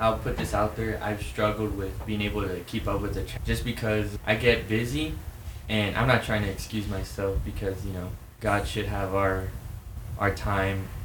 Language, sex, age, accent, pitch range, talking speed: English, male, 20-39, American, 95-105 Hz, 200 wpm